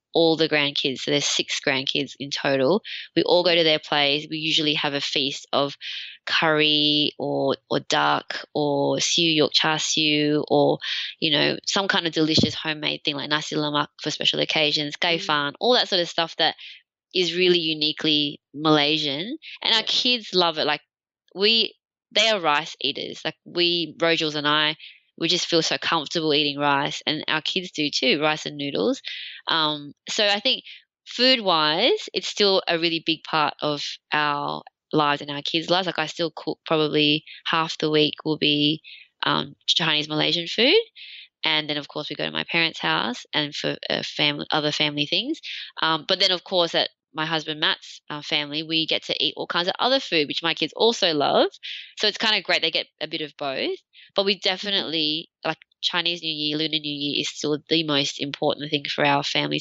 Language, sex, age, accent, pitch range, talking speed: English, female, 20-39, Australian, 145-170 Hz, 195 wpm